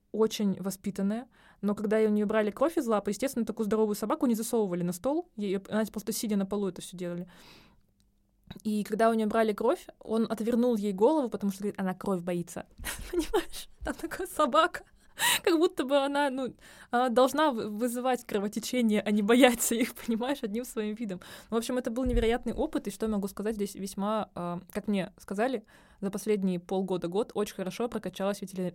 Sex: female